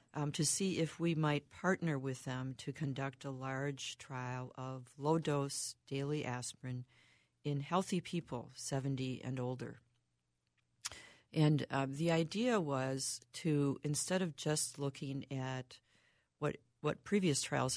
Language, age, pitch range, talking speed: English, 50-69, 130-150 Hz, 130 wpm